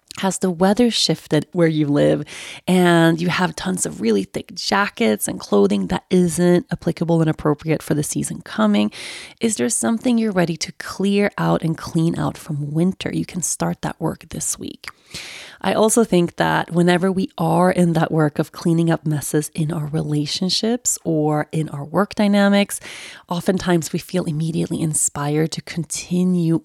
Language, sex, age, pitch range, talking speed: English, female, 30-49, 155-200 Hz, 170 wpm